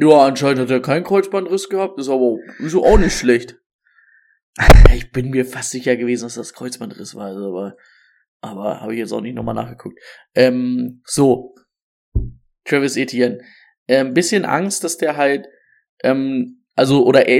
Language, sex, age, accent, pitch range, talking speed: German, male, 20-39, German, 125-150 Hz, 160 wpm